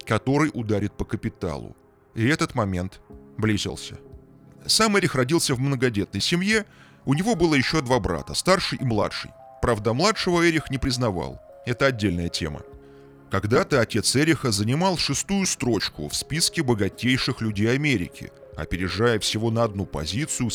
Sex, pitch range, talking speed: male, 100-140 Hz, 135 wpm